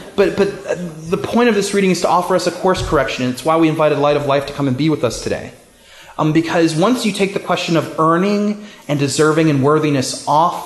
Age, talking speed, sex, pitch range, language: 30-49, 240 wpm, male, 130-165 Hz, English